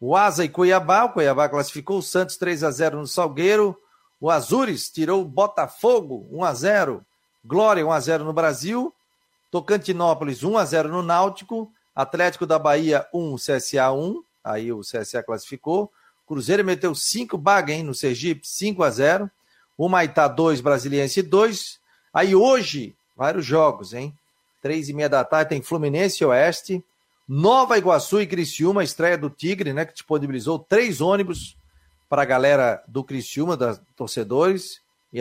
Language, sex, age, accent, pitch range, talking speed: Portuguese, male, 40-59, Brazilian, 145-190 Hz, 140 wpm